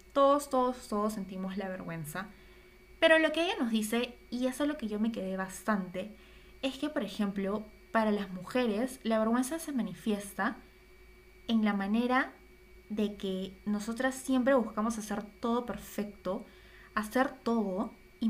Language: Spanish